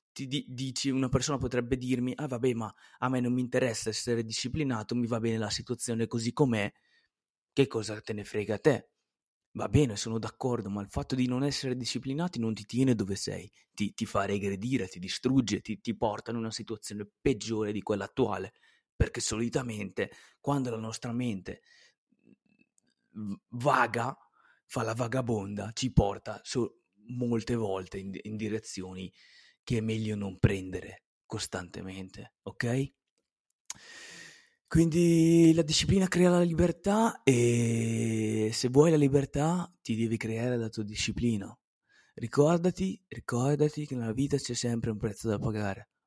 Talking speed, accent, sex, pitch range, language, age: 150 wpm, native, male, 110-135 Hz, Italian, 20-39